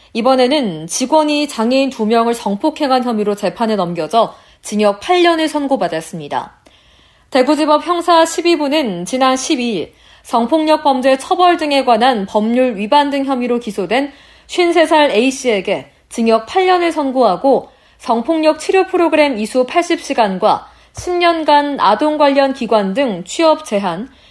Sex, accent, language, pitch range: female, native, Korean, 215-300 Hz